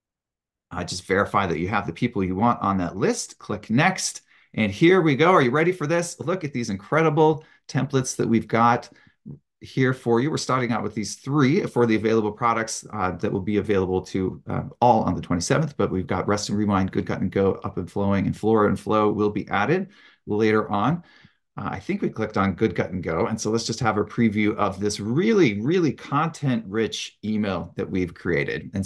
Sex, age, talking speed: male, 30-49, 220 wpm